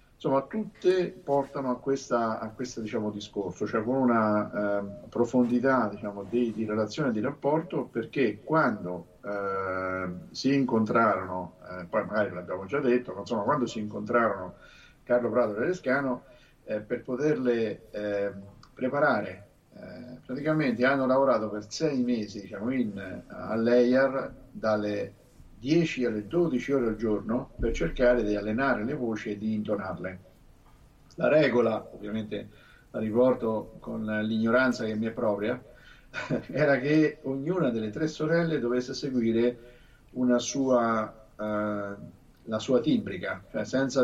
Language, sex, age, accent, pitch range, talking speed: Italian, male, 50-69, native, 105-130 Hz, 135 wpm